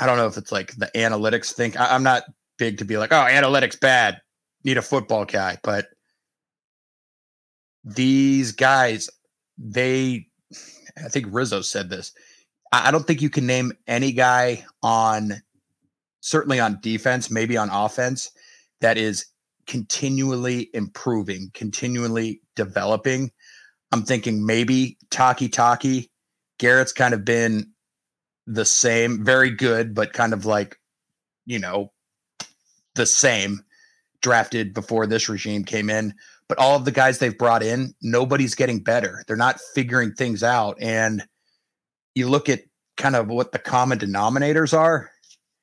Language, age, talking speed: English, 30-49, 140 wpm